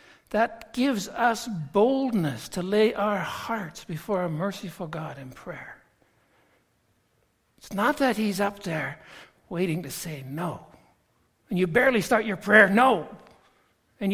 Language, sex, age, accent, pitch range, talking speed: English, male, 60-79, American, 155-215 Hz, 135 wpm